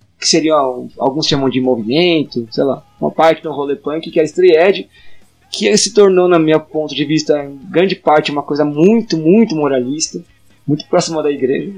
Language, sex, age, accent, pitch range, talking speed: Portuguese, male, 20-39, Brazilian, 135-170 Hz, 190 wpm